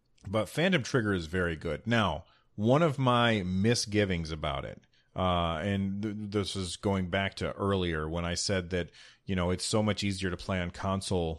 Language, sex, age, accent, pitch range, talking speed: English, male, 40-59, American, 90-115 Hz, 185 wpm